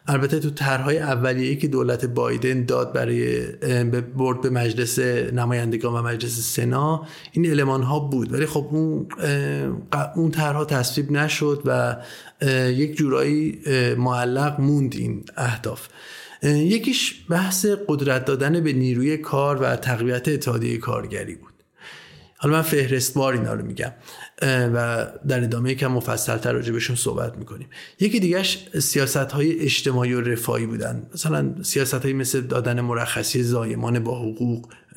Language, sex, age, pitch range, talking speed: Persian, male, 30-49, 120-145 Hz, 130 wpm